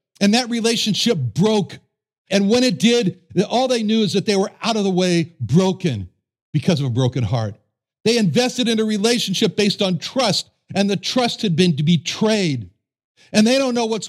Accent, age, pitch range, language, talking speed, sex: American, 60-79, 160-225 Hz, English, 185 wpm, male